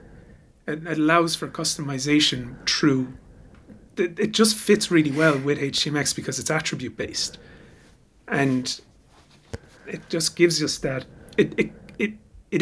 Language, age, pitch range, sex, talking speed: English, 30-49, 130-165 Hz, male, 120 wpm